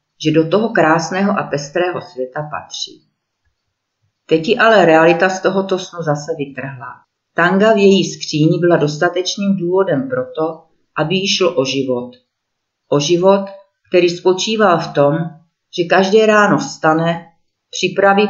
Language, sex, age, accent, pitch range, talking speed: Czech, female, 40-59, native, 145-190 Hz, 130 wpm